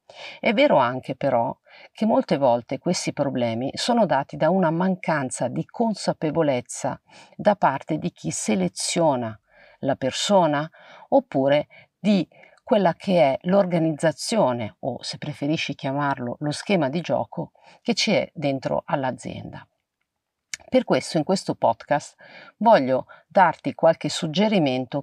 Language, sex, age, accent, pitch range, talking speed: Italian, female, 50-69, native, 135-185 Hz, 120 wpm